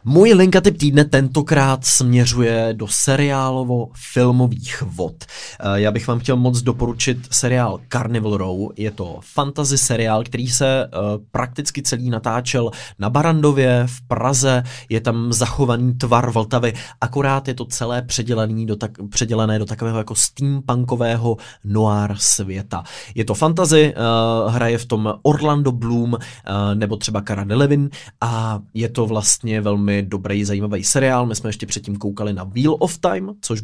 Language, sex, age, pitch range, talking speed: Czech, male, 20-39, 105-130 Hz, 140 wpm